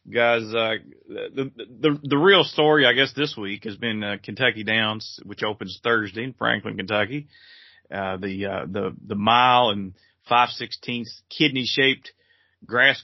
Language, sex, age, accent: English, male, 30-49, American